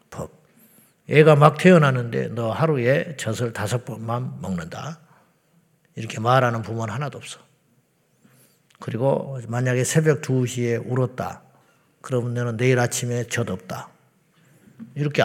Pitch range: 120-155 Hz